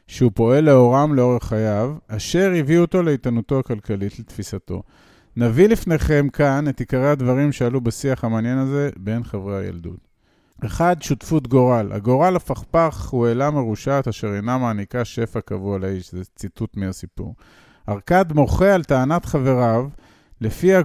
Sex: male